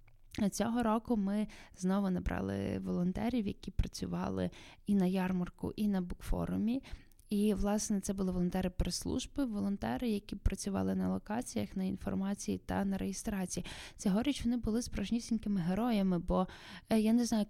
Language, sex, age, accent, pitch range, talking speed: Ukrainian, female, 10-29, native, 180-225 Hz, 135 wpm